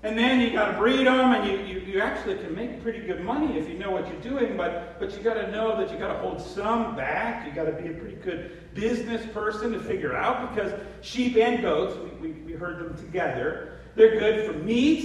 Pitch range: 180-245 Hz